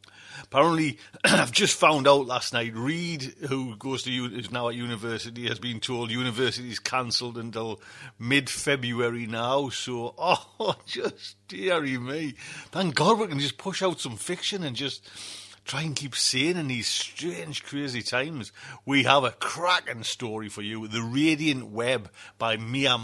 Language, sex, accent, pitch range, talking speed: English, male, British, 115-145 Hz, 160 wpm